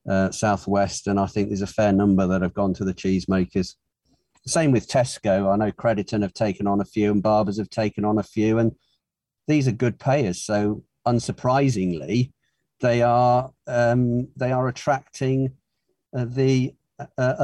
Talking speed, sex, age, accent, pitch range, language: 170 wpm, male, 50-69, British, 105-140 Hz, English